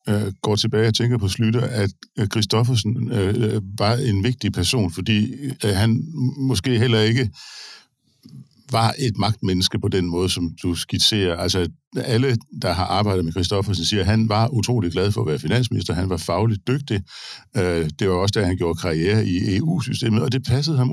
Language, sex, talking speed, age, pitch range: Danish, male, 170 wpm, 60-79, 95-120 Hz